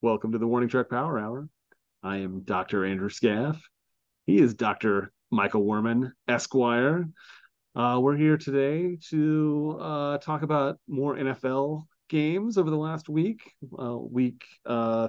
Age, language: 30-49, English